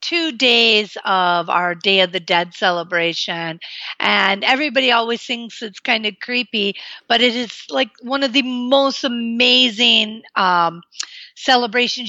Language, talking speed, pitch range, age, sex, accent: English, 140 wpm, 210-260 Hz, 50-69, female, American